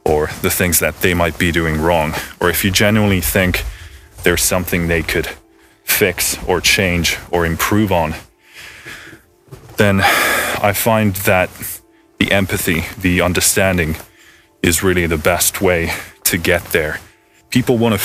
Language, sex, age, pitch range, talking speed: English, male, 20-39, 85-100 Hz, 145 wpm